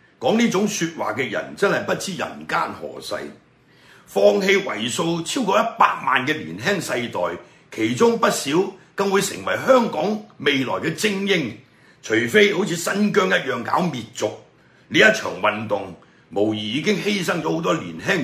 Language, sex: Chinese, male